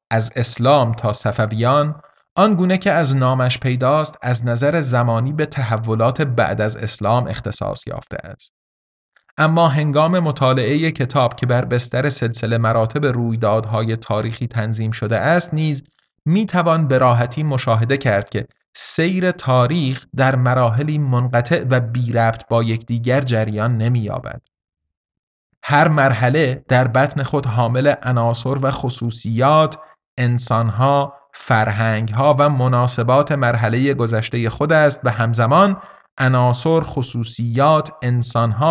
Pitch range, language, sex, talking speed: 115-145 Hz, Persian, male, 125 wpm